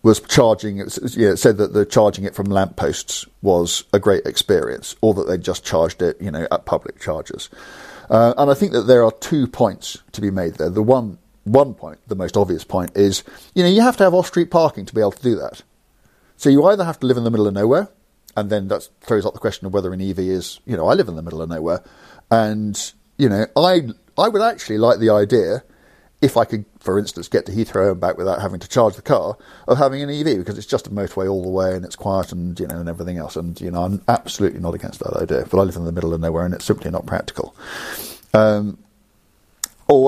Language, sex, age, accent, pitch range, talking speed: English, male, 50-69, British, 95-135 Hz, 250 wpm